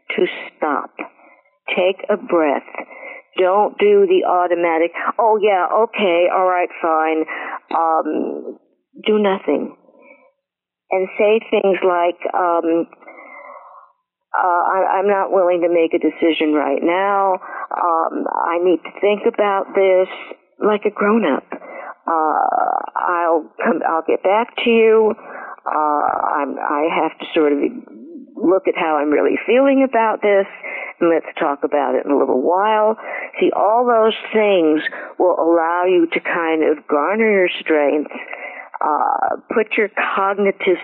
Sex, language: female, English